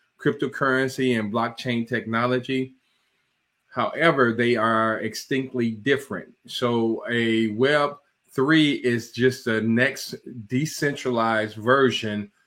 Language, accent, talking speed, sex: English, American, 90 wpm, male